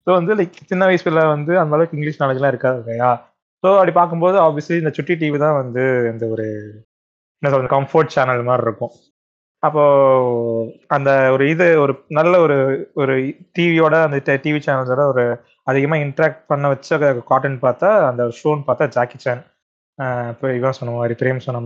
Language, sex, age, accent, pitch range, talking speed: Tamil, male, 20-39, native, 120-150 Hz, 165 wpm